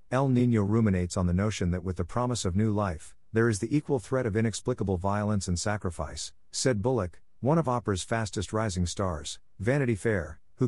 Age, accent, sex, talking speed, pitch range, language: 50-69, American, male, 185 wpm, 90-115 Hz, English